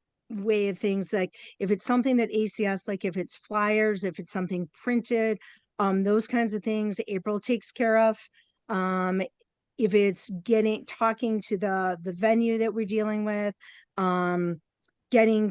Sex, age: female, 50-69